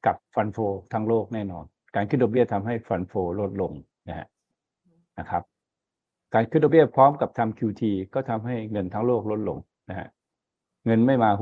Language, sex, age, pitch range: Thai, male, 60-79, 105-130 Hz